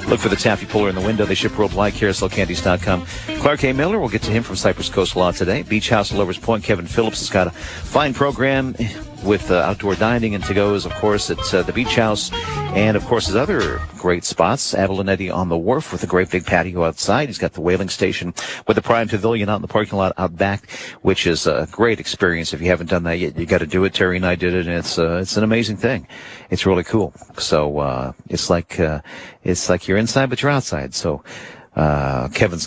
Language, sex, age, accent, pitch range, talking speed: English, male, 50-69, American, 90-110 Hz, 235 wpm